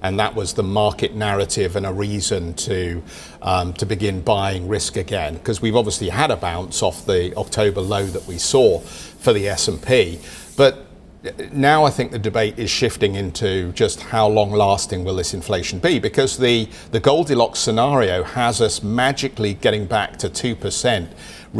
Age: 50-69